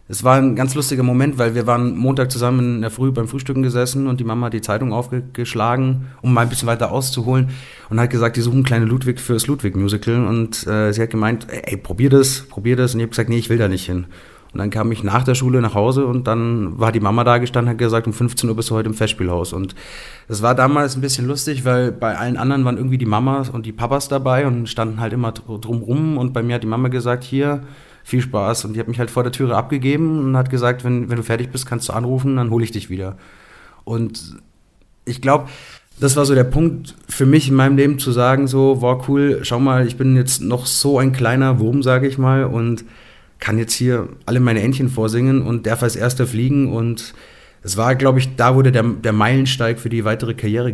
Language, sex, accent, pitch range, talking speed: German, male, German, 115-130 Hz, 240 wpm